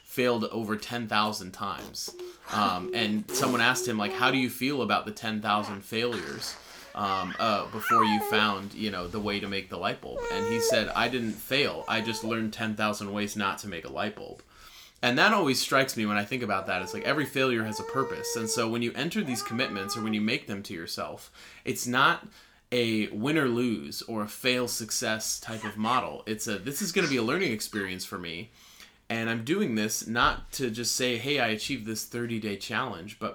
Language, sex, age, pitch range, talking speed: English, male, 30-49, 105-130 Hz, 215 wpm